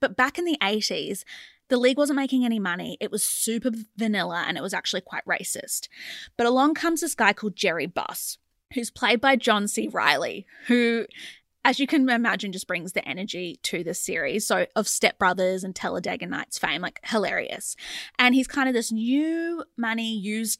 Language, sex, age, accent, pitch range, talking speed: English, female, 20-39, Australian, 200-255 Hz, 190 wpm